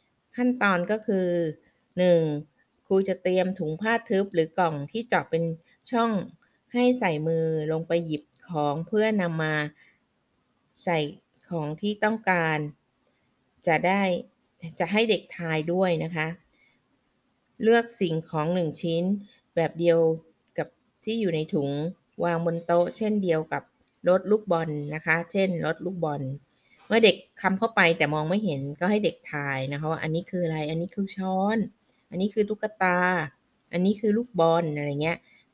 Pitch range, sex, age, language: 160-200 Hz, female, 20-39, Thai